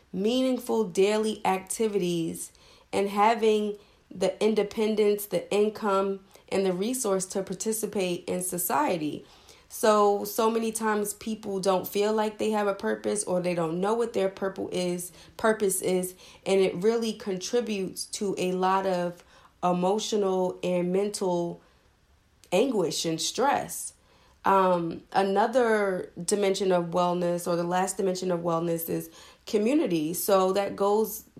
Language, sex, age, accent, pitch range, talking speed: English, female, 30-49, American, 185-220 Hz, 125 wpm